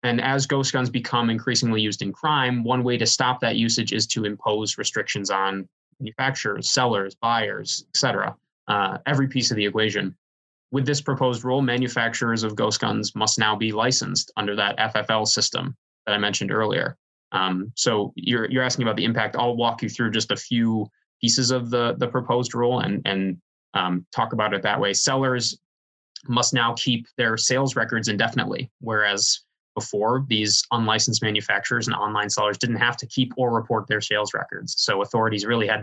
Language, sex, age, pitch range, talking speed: English, male, 20-39, 105-125 Hz, 185 wpm